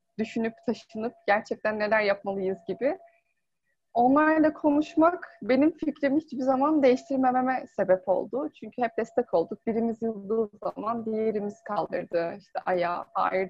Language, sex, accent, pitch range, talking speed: Turkish, female, native, 210-285 Hz, 120 wpm